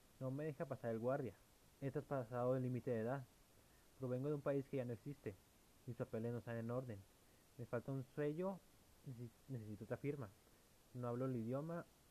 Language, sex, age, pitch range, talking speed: Spanish, male, 20-39, 110-135 Hz, 185 wpm